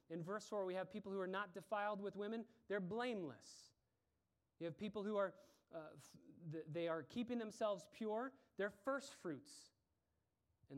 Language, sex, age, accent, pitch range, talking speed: English, male, 30-49, American, 130-205 Hz, 165 wpm